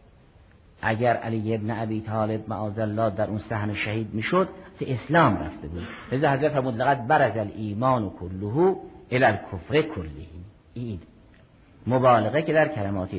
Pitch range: 105-145 Hz